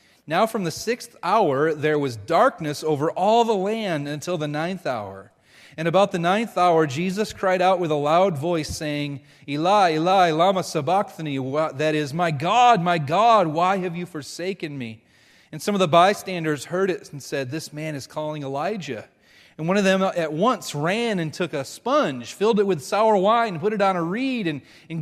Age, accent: 30-49, American